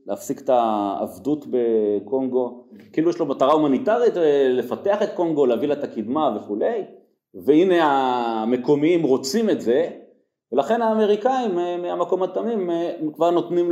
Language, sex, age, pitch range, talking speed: Hebrew, male, 30-49, 125-180 Hz, 120 wpm